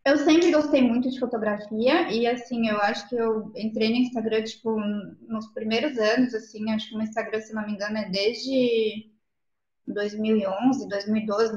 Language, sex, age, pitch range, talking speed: Portuguese, female, 20-39, 220-260 Hz, 165 wpm